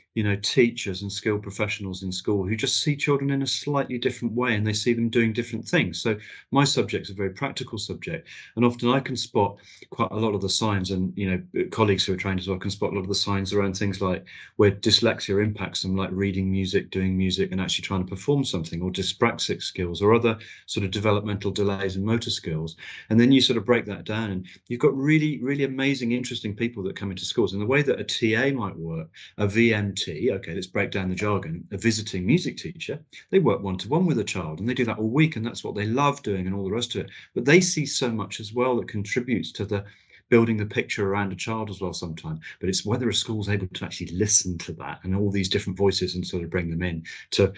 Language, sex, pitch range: English, male, 95-115 Hz